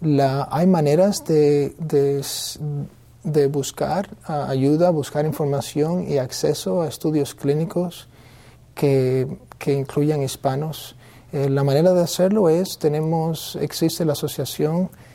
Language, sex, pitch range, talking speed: English, male, 135-155 Hz, 120 wpm